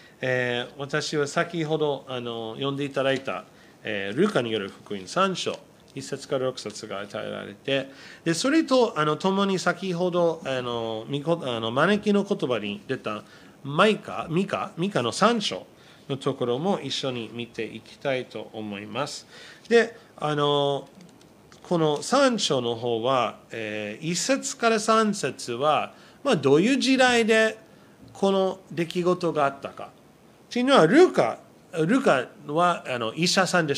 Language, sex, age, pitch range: Japanese, male, 40-59, 120-190 Hz